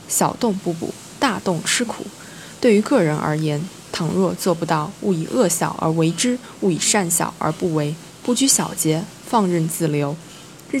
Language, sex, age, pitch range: Chinese, female, 20-39, 165-210 Hz